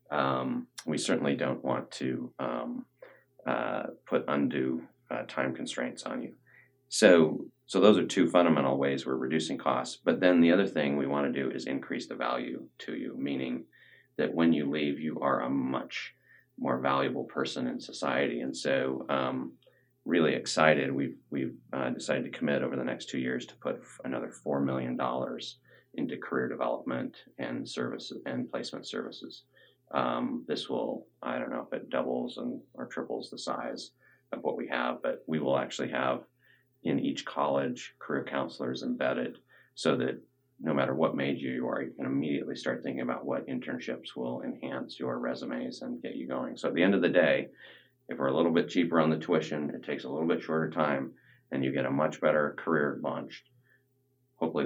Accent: American